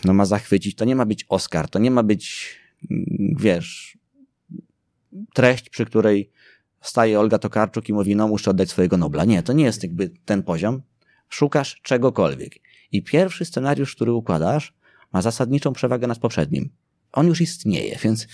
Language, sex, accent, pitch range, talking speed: Polish, male, native, 100-140 Hz, 160 wpm